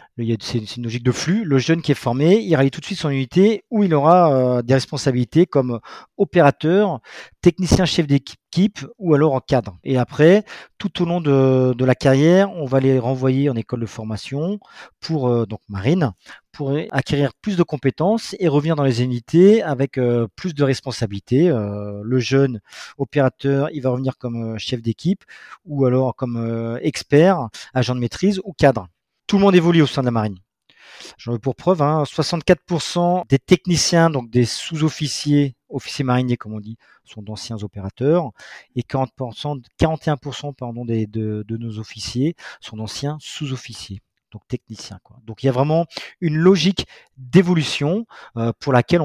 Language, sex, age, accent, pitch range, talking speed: French, male, 40-59, French, 120-165 Hz, 175 wpm